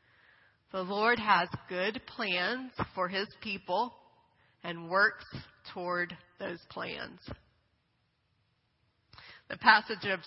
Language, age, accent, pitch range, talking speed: English, 30-49, American, 180-220 Hz, 95 wpm